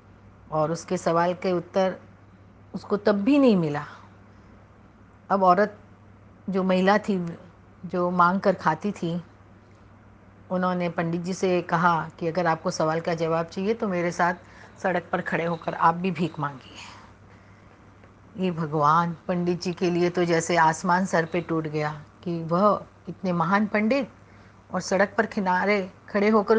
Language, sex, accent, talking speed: Hindi, female, native, 150 wpm